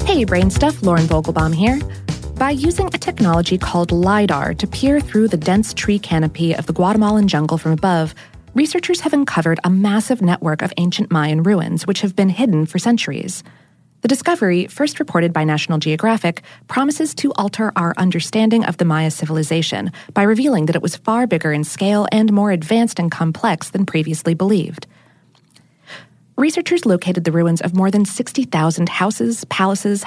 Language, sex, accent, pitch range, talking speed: English, female, American, 165-220 Hz, 170 wpm